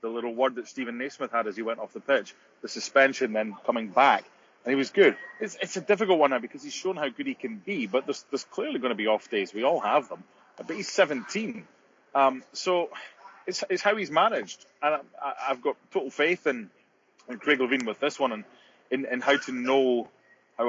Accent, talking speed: British, 230 wpm